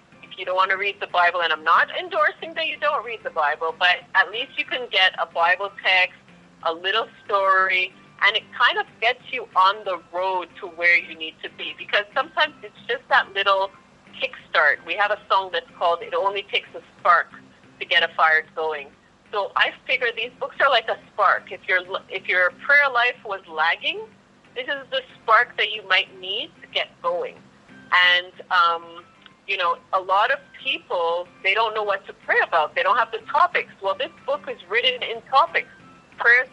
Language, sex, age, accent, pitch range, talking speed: English, female, 30-49, American, 185-295 Hz, 200 wpm